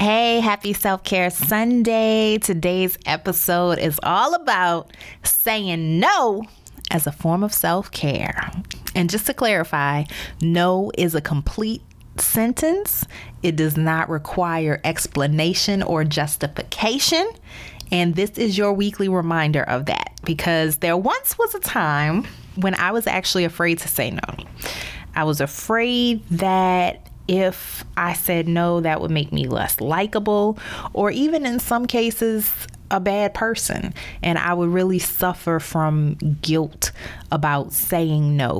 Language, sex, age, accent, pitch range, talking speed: English, female, 30-49, American, 155-200 Hz, 135 wpm